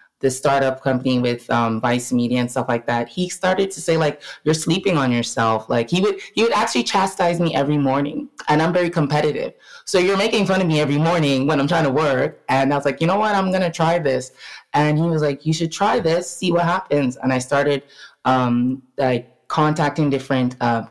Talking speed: 225 wpm